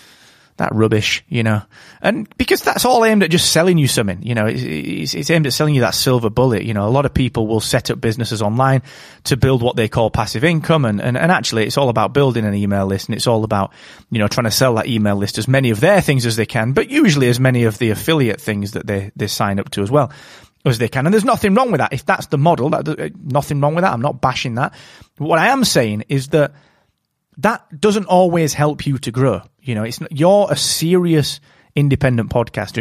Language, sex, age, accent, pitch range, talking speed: English, male, 30-49, British, 110-160 Hz, 245 wpm